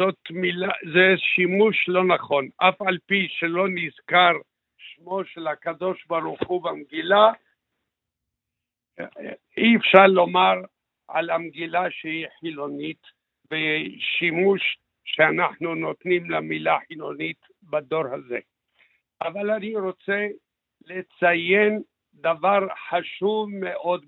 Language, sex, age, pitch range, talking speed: Hebrew, male, 60-79, 170-200 Hz, 95 wpm